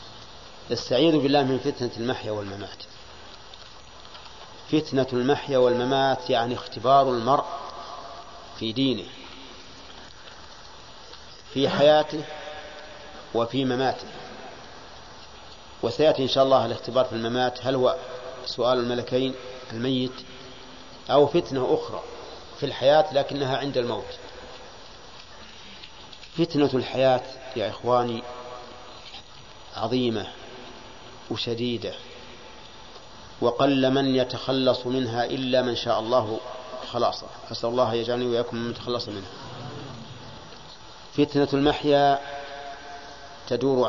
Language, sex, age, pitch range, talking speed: Arabic, male, 40-59, 120-140 Hz, 85 wpm